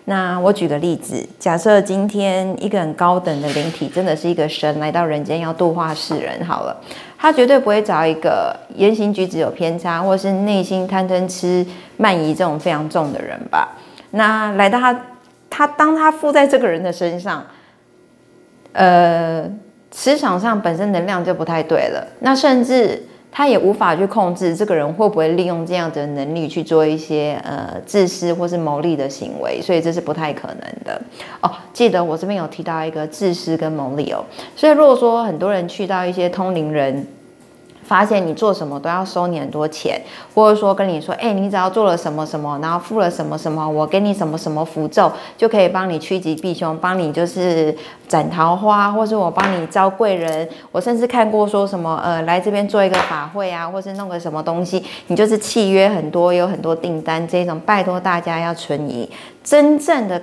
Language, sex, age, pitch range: Chinese, female, 30-49, 160-205 Hz